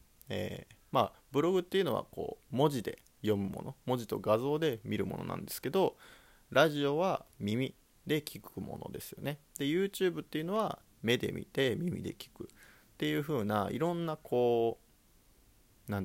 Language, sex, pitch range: Japanese, male, 105-160 Hz